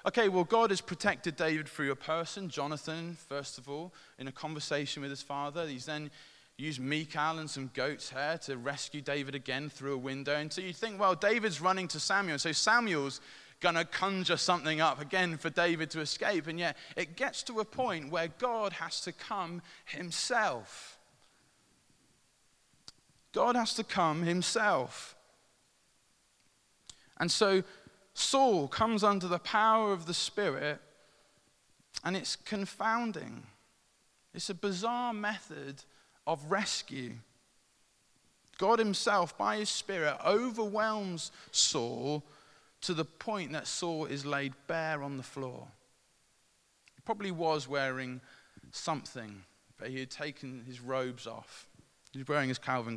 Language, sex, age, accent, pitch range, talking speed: English, male, 20-39, British, 140-195 Hz, 145 wpm